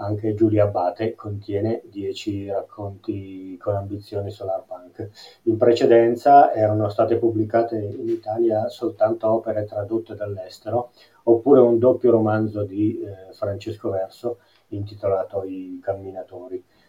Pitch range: 100-115 Hz